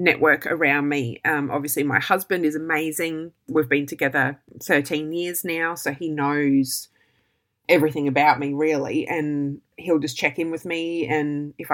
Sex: female